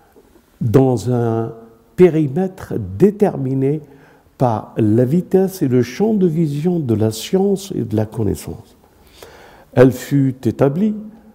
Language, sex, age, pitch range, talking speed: French, male, 60-79, 115-190 Hz, 115 wpm